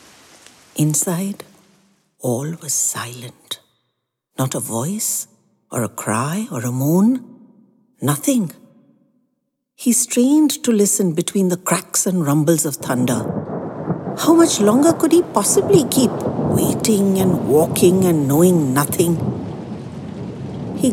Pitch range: 160-240 Hz